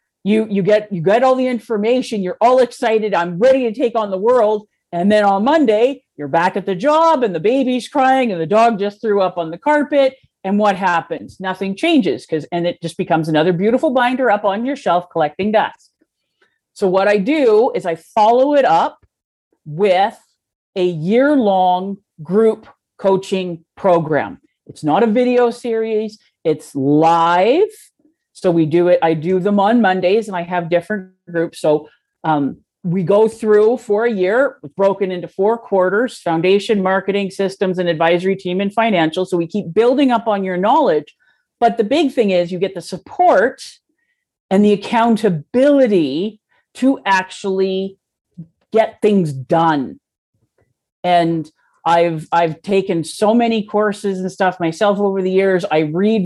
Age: 50-69